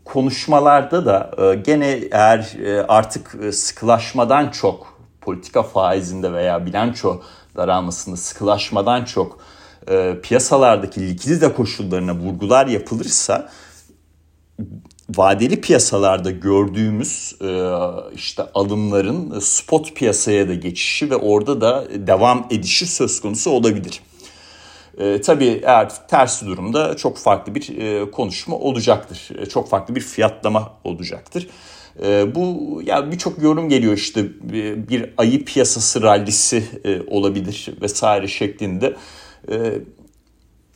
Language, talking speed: Turkish, 105 wpm